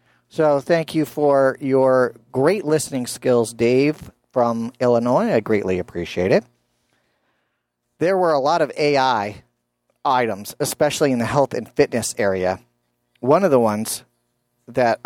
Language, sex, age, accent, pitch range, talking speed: English, male, 40-59, American, 115-145 Hz, 135 wpm